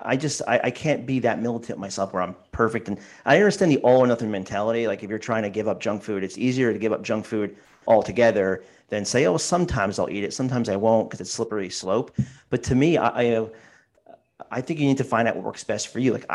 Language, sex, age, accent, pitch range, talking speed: English, male, 40-59, American, 100-125 Hz, 255 wpm